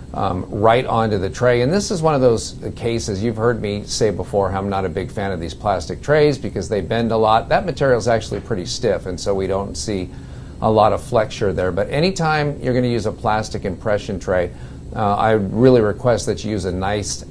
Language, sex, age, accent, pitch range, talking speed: English, male, 50-69, American, 100-125 Hz, 230 wpm